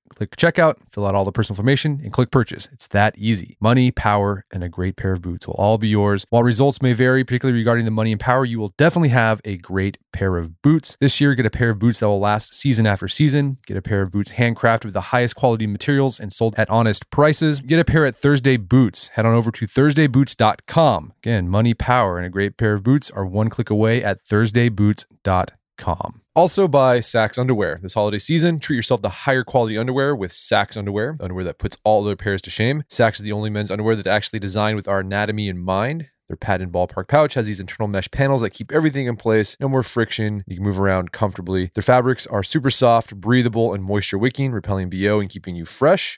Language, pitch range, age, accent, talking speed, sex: English, 100-130 Hz, 20-39, American, 225 wpm, male